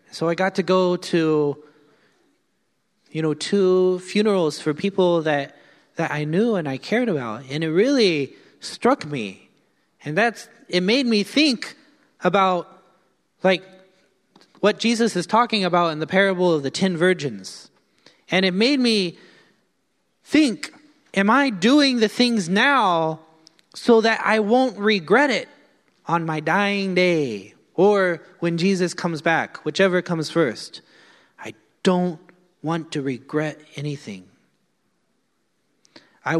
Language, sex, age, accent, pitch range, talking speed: English, male, 30-49, American, 165-215 Hz, 135 wpm